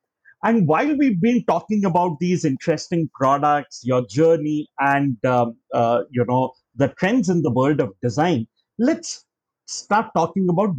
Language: English